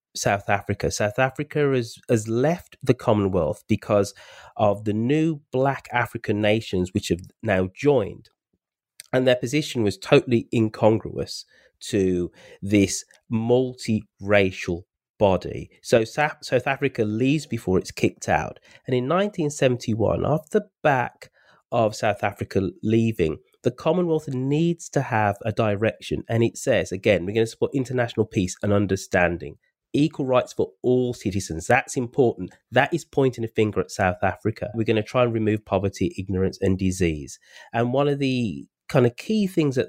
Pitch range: 100-135 Hz